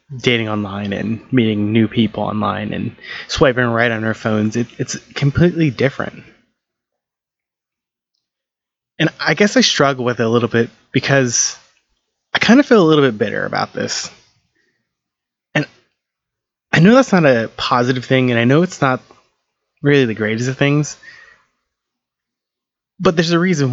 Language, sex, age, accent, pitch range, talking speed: English, male, 20-39, American, 115-145 Hz, 150 wpm